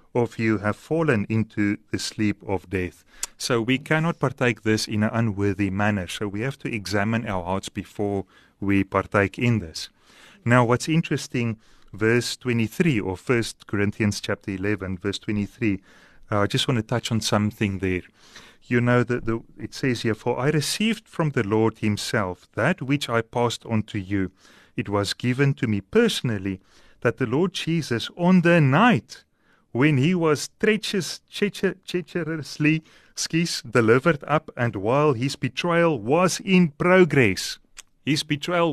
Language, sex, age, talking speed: English, male, 30-49, 160 wpm